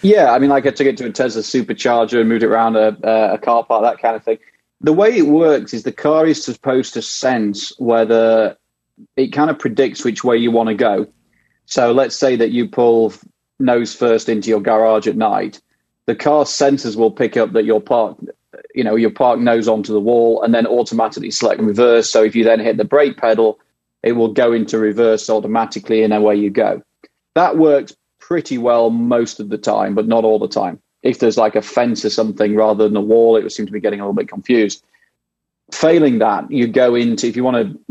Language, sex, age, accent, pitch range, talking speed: English, male, 30-49, British, 110-125 Hz, 225 wpm